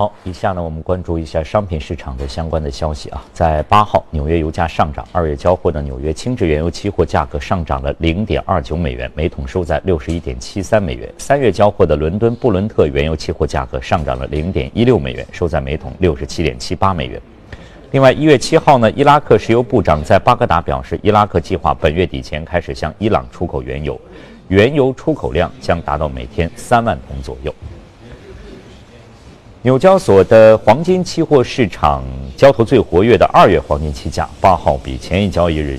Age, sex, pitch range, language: 50-69, male, 75-105 Hz, Chinese